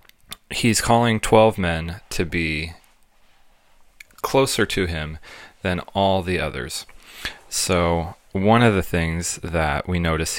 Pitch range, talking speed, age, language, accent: 80-105 Hz, 120 wpm, 30-49, English, American